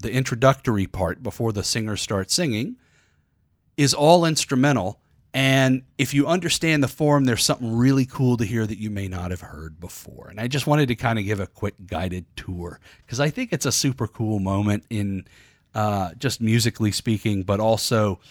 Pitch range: 100-135 Hz